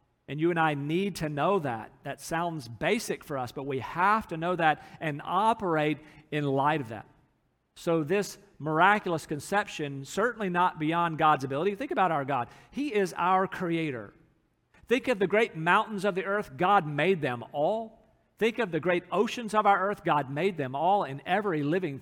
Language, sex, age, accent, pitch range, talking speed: English, male, 50-69, American, 150-200 Hz, 190 wpm